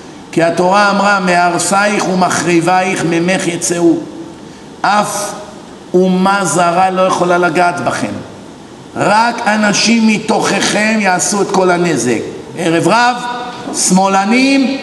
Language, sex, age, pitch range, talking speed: Hebrew, male, 50-69, 180-240 Hz, 95 wpm